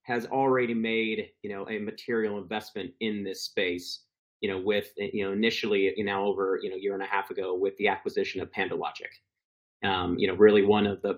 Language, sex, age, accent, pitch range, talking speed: English, male, 30-49, American, 110-140 Hz, 210 wpm